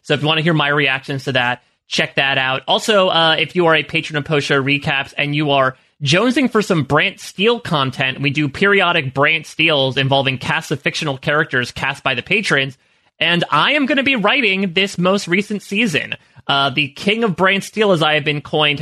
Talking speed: 220 wpm